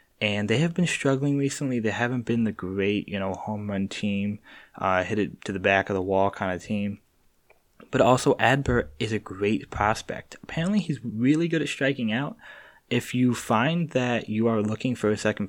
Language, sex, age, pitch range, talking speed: English, male, 20-39, 100-125 Hz, 200 wpm